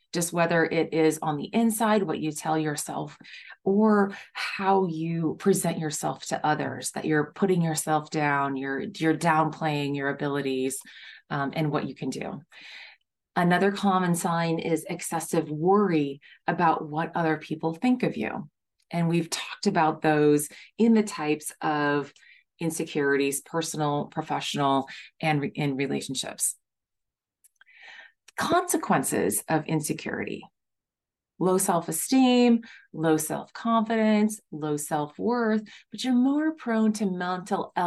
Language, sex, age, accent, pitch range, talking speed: English, female, 30-49, American, 155-200 Hz, 125 wpm